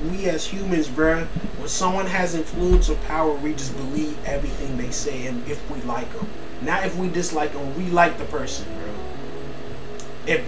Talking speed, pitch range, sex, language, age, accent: 185 wpm, 170-235 Hz, male, English, 20-39, American